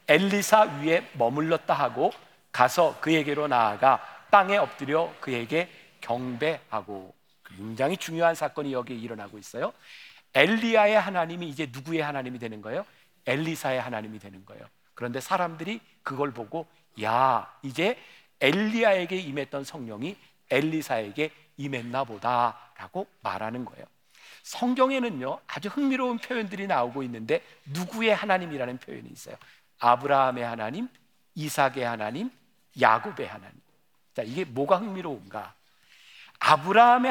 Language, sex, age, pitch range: Korean, male, 40-59, 130-195 Hz